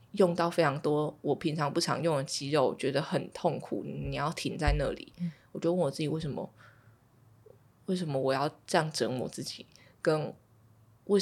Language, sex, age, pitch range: Chinese, female, 20-39, 125-170 Hz